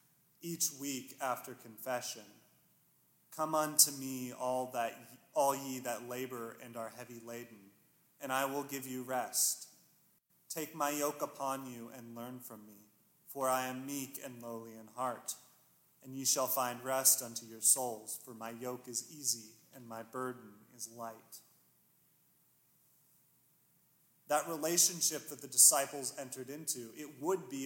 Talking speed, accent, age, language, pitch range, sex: 150 wpm, American, 30-49, English, 120-145 Hz, male